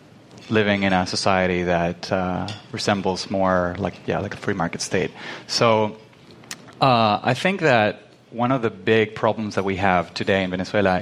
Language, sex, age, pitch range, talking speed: English, male, 30-49, 95-120 Hz, 170 wpm